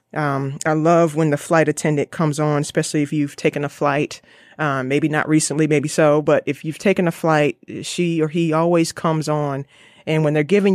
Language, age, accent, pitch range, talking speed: English, 30-49, American, 150-170 Hz, 205 wpm